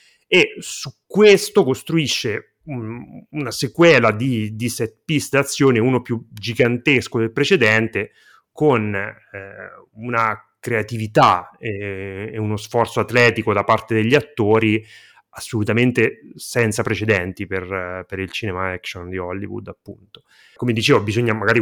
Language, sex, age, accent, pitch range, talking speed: Italian, male, 30-49, native, 105-120 Hz, 120 wpm